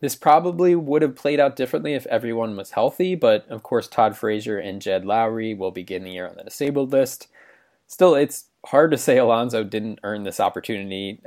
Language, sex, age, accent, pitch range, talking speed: English, male, 20-39, American, 100-130 Hz, 195 wpm